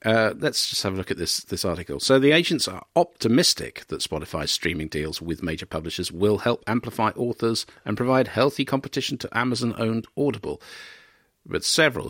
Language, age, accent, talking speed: English, 50-69, British, 175 wpm